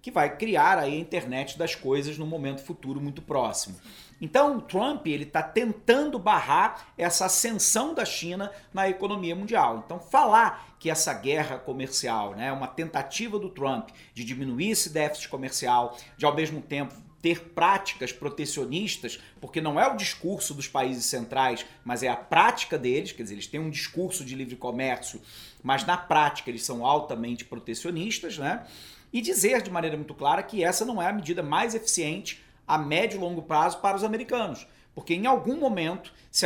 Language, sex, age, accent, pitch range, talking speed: Portuguese, male, 40-59, Brazilian, 135-185 Hz, 175 wpm